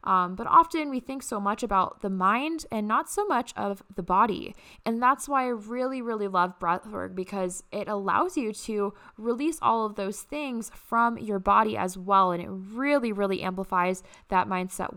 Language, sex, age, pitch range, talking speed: English, female, 10-29, 200-250 Hz, 190 wpm